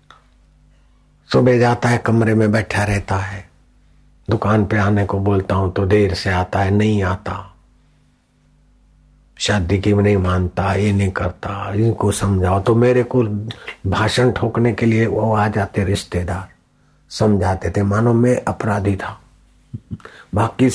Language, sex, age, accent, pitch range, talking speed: Hindi, male, 50-69, native, 100-115 Hz, 140 wpm